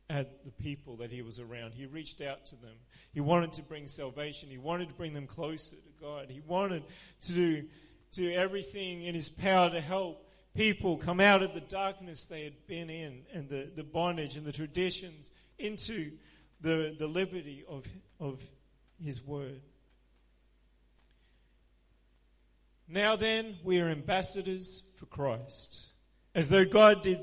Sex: male